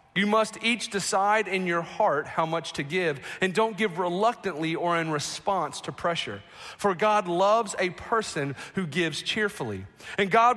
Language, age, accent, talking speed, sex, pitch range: English, 40-59, American, 170 wpm, male, 160-210 Hz